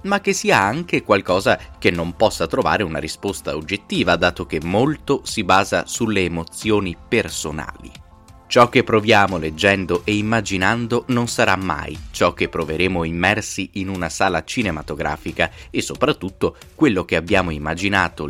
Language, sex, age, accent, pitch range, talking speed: Italian, male, 20-39, native, 80-105 Hz, 140 wpm